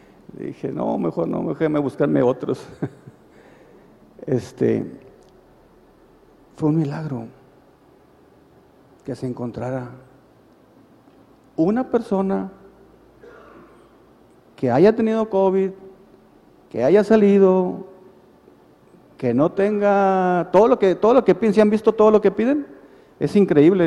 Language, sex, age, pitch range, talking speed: Spanish, male, 50-69, 130-190 Hz, 110 wpm